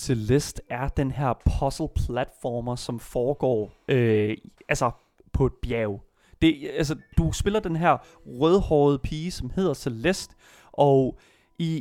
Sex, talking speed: male, 125 wpm